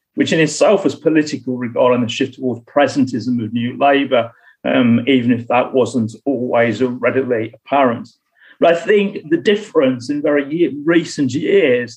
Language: English